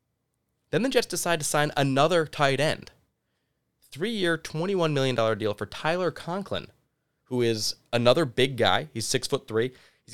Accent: American